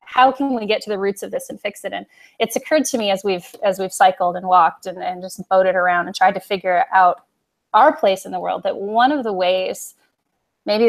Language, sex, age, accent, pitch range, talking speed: English, female, 20-39, American, 190-225 Hz, 250 wpm